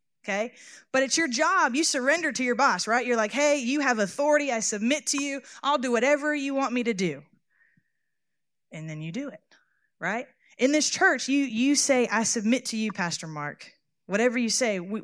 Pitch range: 185-250 Hz